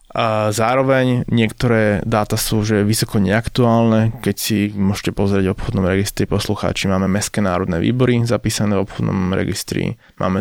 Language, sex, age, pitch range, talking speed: Slovak, male, 20-39, 95-110 Hz, 145 wpm